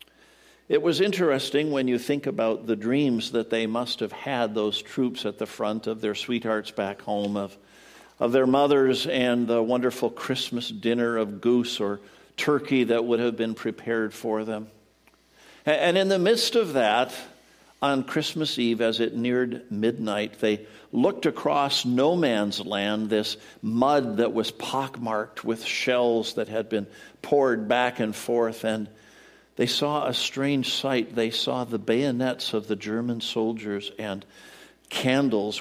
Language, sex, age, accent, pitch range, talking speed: English, male, 50-69, American, 110-135 Hz, 155 wpm